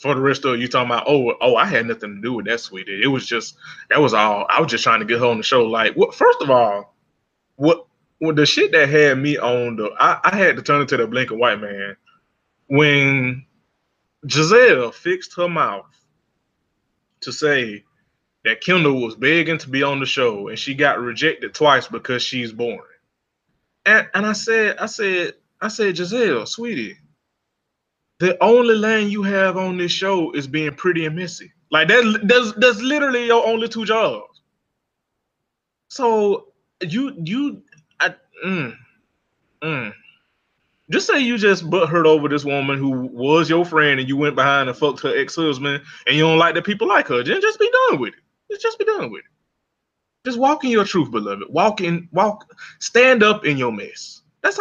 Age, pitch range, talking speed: 20-39, 140-235 Hz, 195 wpm